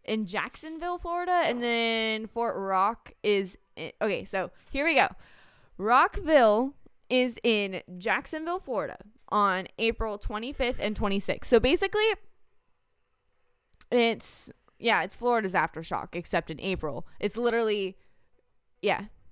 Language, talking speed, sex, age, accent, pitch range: English, 115 wpm, female, 20-39, American, 195-255 Hz